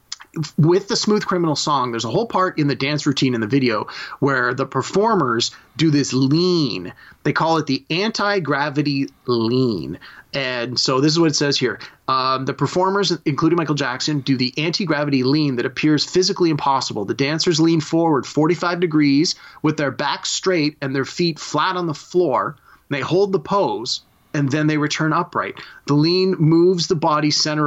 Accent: American